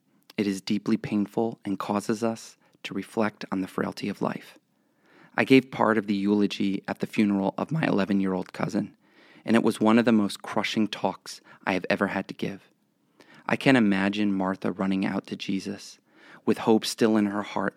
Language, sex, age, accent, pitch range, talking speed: English, male, 30-49, American, 100-115 Hz, 190 wpm